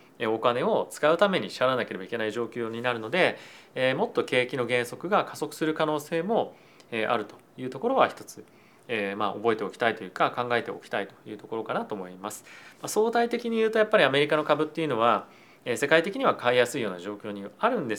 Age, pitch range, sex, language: 30-49, 120-165 Hz, male, Japanese